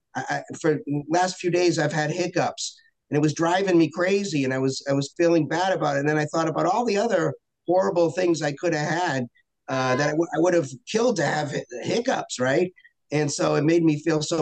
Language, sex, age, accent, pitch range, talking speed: English, male, 50-69, American, 150-180 Hz, 235 wpm